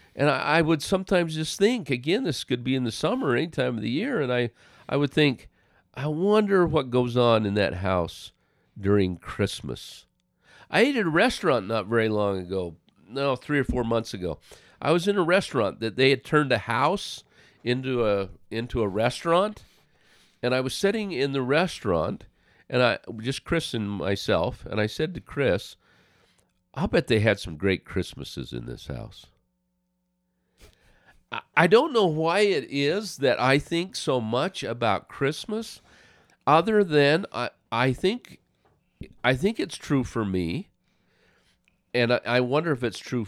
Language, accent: English, American